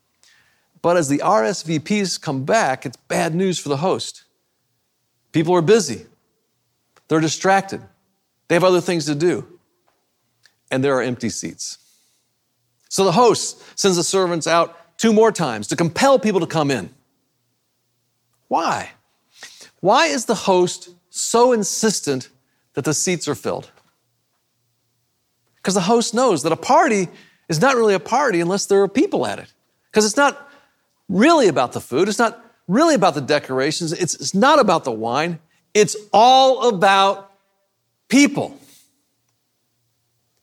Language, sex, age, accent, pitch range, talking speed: English, male, 40-59, American, 145-205 Hz, 145 wpm